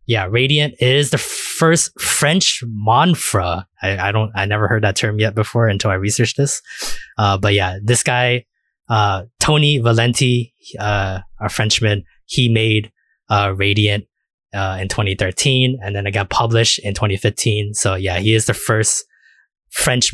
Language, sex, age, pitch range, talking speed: English, male, 20-39, 100-120 Hz, 160 wpm